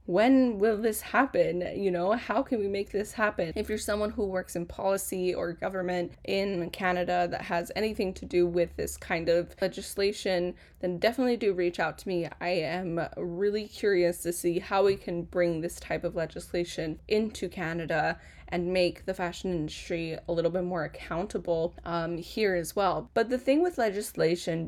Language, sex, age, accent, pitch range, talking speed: English, female, 10-29, American, 170-210 Hz, 180 wpm